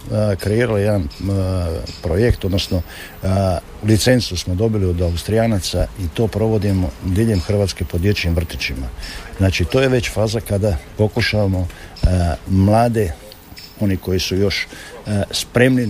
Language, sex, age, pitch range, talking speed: Croatian, male, 50-69, 90-110 Hz, 130 wpm